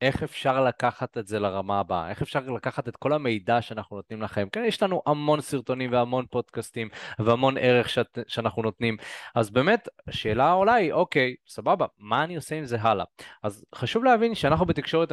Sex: male